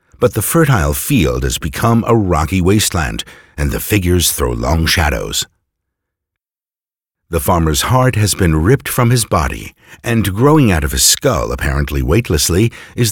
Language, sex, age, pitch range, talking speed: English, male, 60-79, 80-115 Hz, 150 wpm